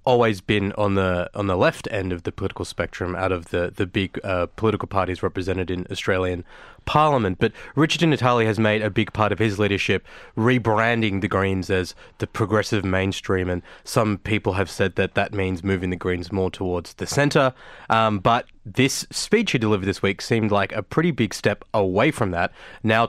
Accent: Australian